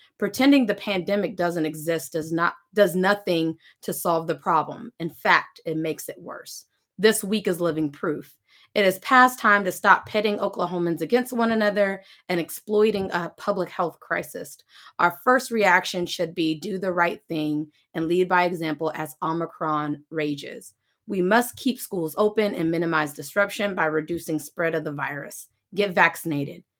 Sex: female